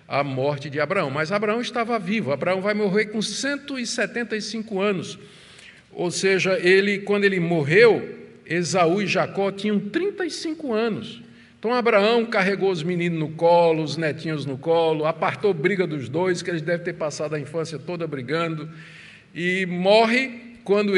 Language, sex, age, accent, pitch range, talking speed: Portuguese, male, 50-69, Brazilian, 135-190 Hz, 150 wpm